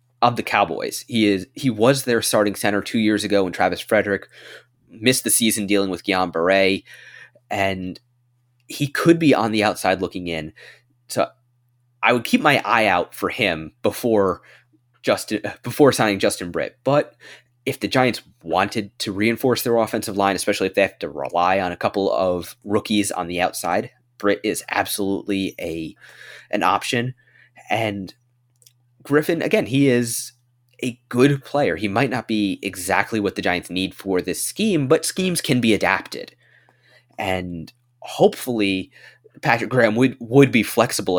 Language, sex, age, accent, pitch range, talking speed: English, male, 20-39, American, 100-125 Hz, 160 wpm